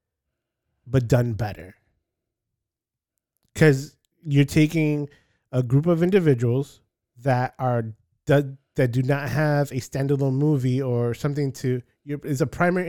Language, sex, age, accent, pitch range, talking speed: English, male, 20-39, American, 125-145 Hz, 120 wpm